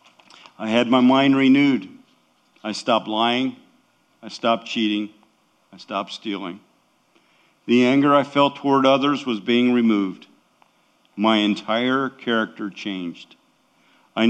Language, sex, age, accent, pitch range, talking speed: English, male, 50-69, American, 105-135 Hz, 120 wpm